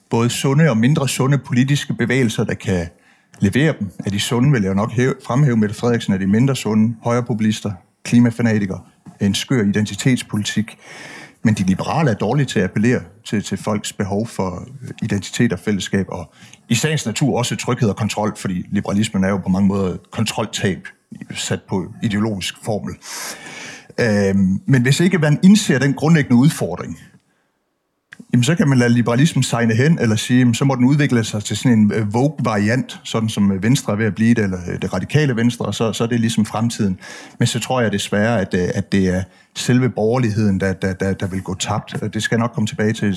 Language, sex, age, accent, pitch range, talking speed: Danish, male, 60-79, native, 105-130 Hz, 190 wpm